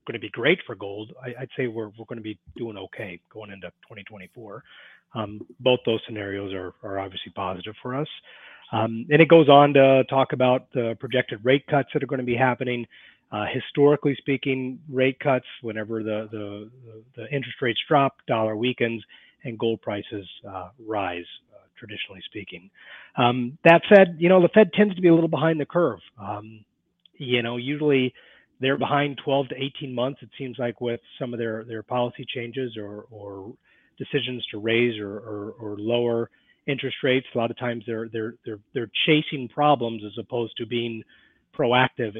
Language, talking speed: English, 185 wpm